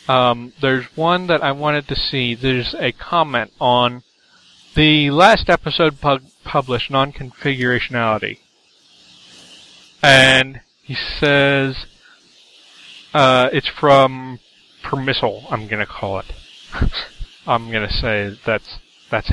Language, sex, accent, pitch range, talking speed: English, male, American, 120-155 Hz, 110 wpm